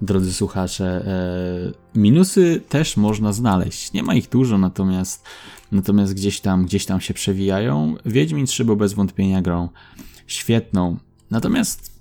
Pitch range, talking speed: 95-125 Hz, 130 wpm